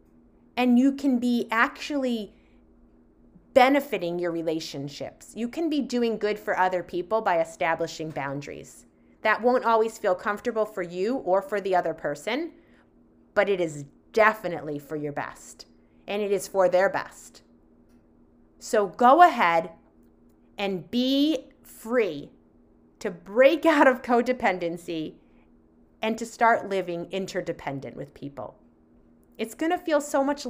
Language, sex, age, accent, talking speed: English, female, 30-49, American, 135 wpm